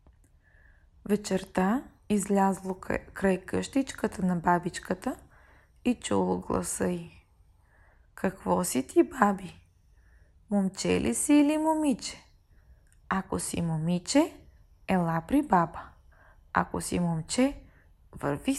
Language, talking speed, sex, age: Bulgarian, 95 wpm, female, 20-39